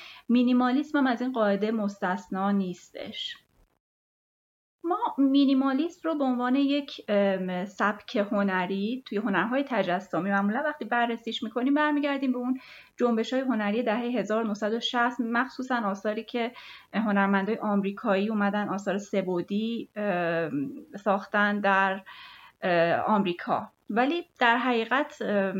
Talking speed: 105 wpm